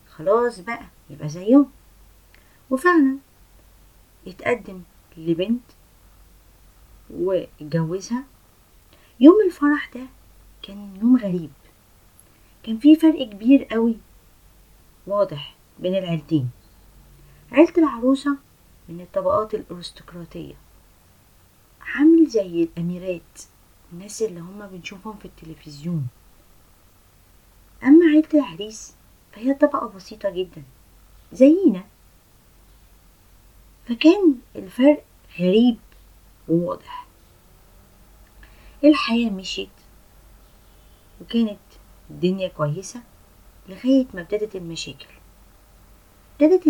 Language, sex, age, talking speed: Arabic, female, 30-49, 75 wpm